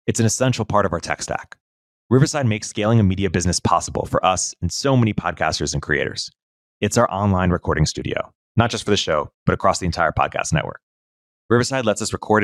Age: 30-49